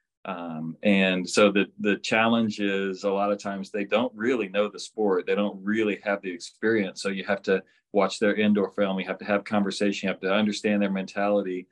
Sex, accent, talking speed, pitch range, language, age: male, American, 215 wpm, 95-105 Hz, English, 40-59